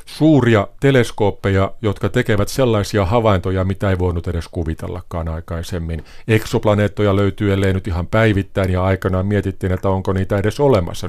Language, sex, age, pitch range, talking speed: Finnish, male, 50-69, 95-115 Hz, 135 wpm